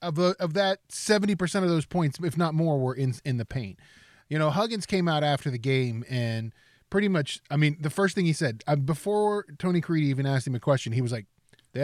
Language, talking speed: English, 240 wpm